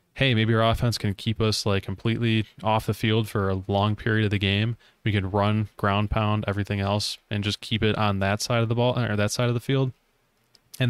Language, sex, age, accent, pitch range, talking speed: English, male, 20-39, American, 100-115 Hz, 235 wpm